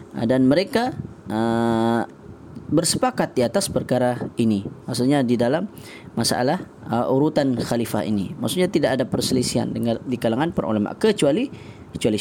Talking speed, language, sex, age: 130 wpm, Malay, female, 20-39